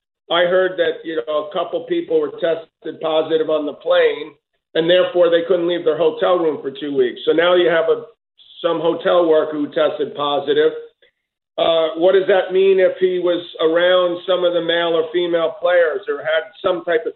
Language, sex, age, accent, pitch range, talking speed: English, male, 50-69, American, 155-215 Hz, 200 wpm